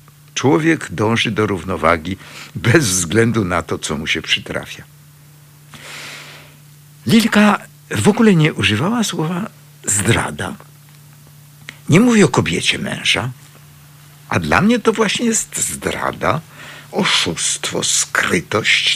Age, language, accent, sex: 60-79, Polish, native, male